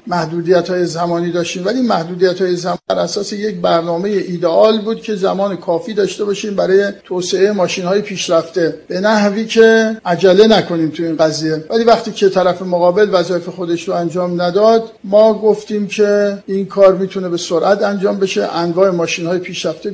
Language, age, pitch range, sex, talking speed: Persian, 50-69, 175-205 Hz, male, 165 wpm